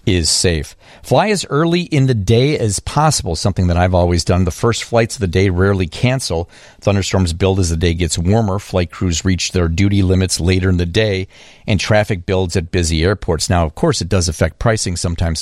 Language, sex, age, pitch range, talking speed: English, male, 50-69, 90-115 Hz, 210 wpm